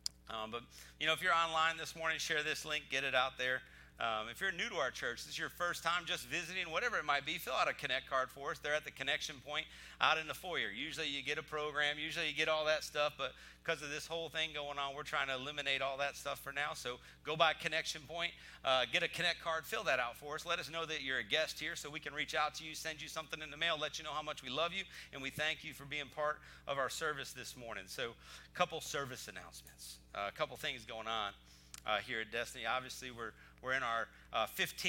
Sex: male